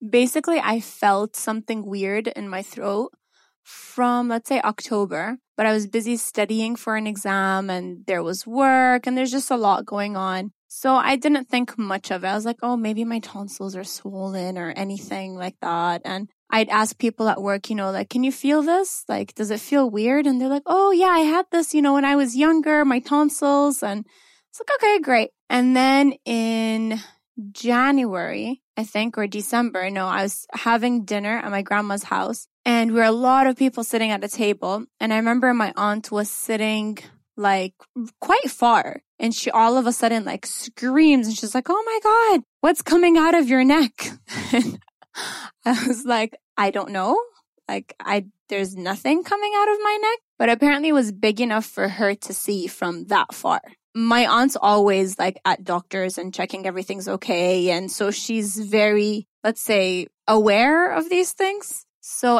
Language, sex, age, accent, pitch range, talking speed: English, female, 10-29, American, 205-265 Hz, 190 wpm